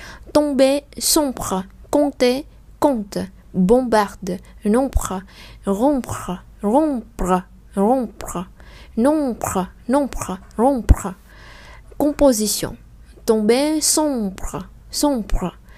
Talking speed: 60 wpm